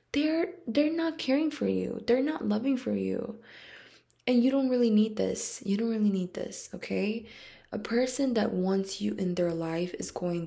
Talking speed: 190 wpm